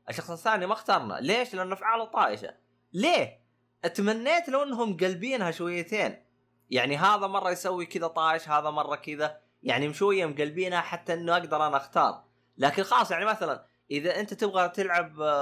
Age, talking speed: 20-39, 150 wpm